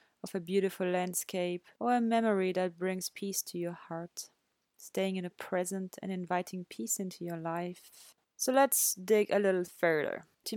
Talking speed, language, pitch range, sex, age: 170 wpm, English, 175-205 Hz, female, 20-39